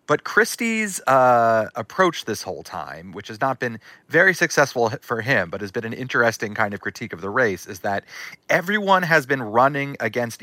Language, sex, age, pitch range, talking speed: English, male, 30-49, 110-145 Hz, 190 wpm